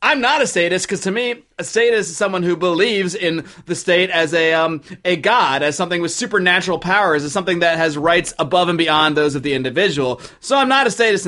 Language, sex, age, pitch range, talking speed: English, male, 30-49, 155-190 Hz, 230 wpm